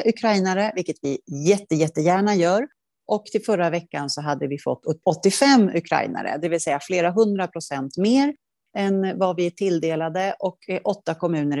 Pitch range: 160-240 Hz